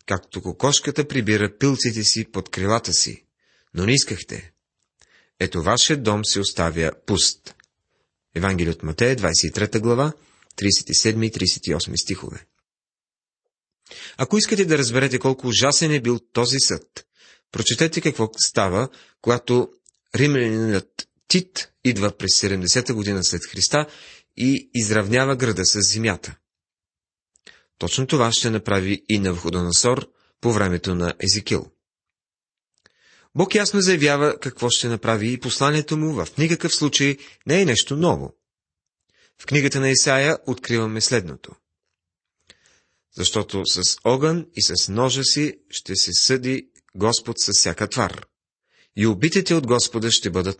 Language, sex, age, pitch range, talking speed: Bulgarian, male, 30-49, 95-135 Hz, 125 wpm